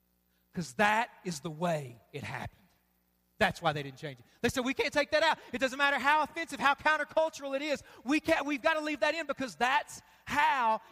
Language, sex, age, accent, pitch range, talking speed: English, male, 40-59, American, 220-275 Hz, 220 wpm